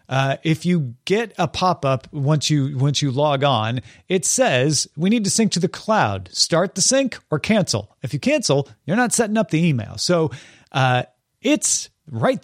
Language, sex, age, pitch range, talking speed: English, male, 40-59, 130-190 Hz, 190 wpm